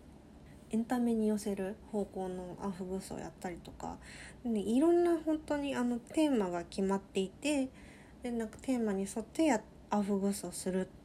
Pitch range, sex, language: 185-240 Hz, female, Japanese